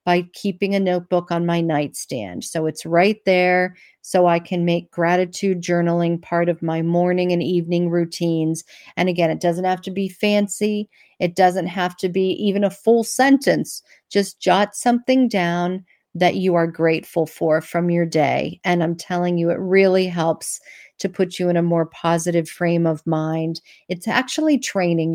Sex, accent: female, American